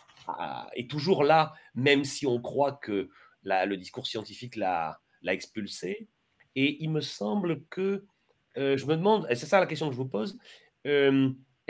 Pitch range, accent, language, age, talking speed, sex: 125-175 Hz, French, French, 40-59, 180 wpm, male